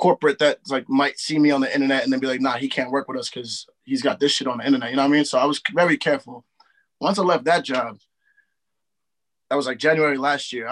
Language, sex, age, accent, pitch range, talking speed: English, male, 20-39, American, 130-165 Hz, 270 wpm